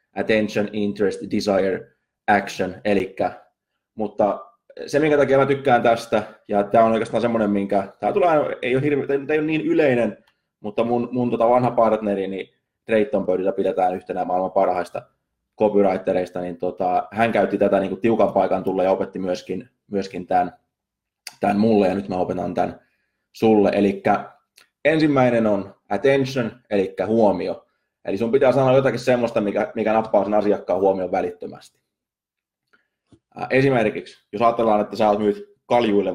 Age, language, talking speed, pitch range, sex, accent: 20-39, Finnish, 155 wpm, 100-120 Hz, male, native